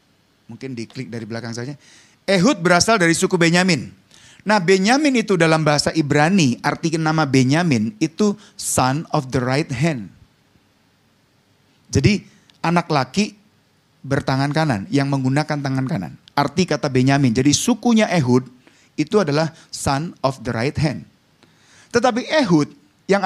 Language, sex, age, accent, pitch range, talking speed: Indonesian, male, 30-49, native, 140-195 Hz, 130 wpm